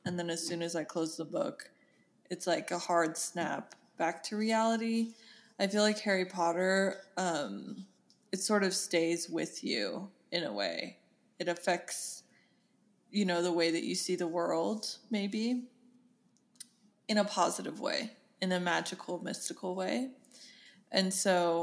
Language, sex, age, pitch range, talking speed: English, female, 20-39, 170-210 Hz, 155 wpm